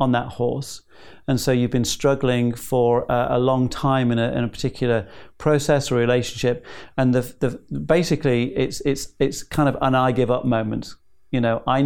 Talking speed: 185 wpm